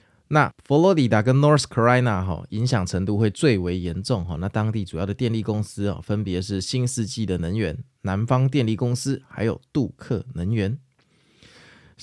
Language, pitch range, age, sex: Chinese, 105-140 Hz, 20-39, male